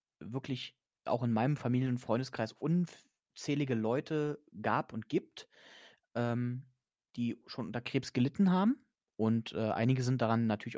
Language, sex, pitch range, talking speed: German, male, 115-145 Hz, 140 wpm